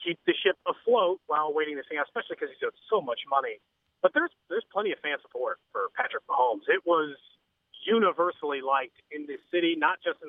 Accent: American